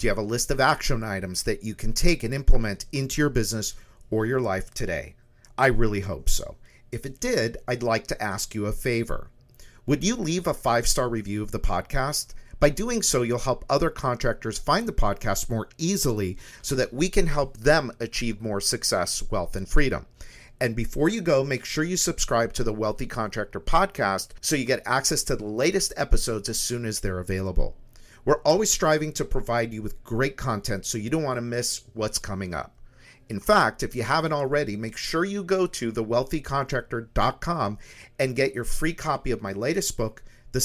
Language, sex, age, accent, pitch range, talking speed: English, male, 50-69, American, 105-135 Hz, 200 wpm